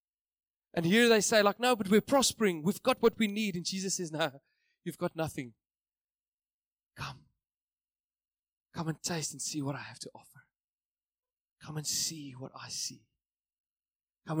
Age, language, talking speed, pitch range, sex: 20-39, English, 160 wpm, 135-170 Hz, male